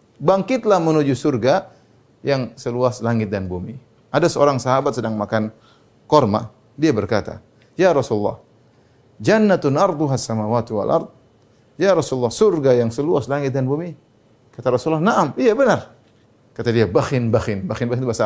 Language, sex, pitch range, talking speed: Indonesian, male, 110-145 Hz, 130 wpm